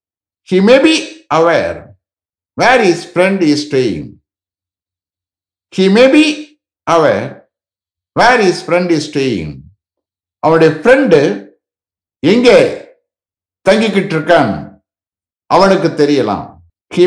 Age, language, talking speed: 60-79, English, 90 wpm